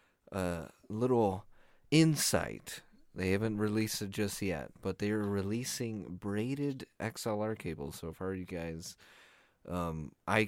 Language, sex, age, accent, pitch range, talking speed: English, male, 30-49, American, 85-110 Hz, 130 wpm